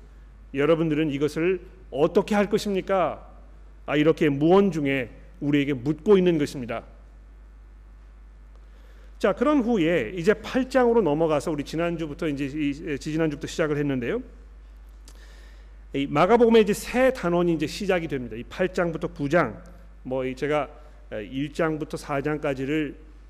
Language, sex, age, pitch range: Korean, male, 40-59, 130-180 Hz